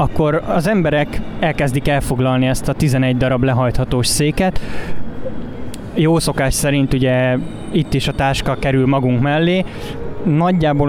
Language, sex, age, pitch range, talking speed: Hungarian, male, 20-39, 125-150 Hz, 125 wpm